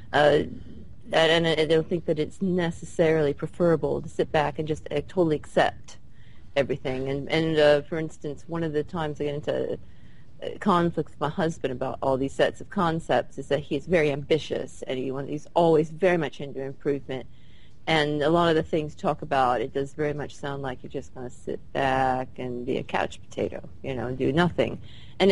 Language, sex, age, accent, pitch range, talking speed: English, female, 30-49, American, 135-160 Hz, 205 wpm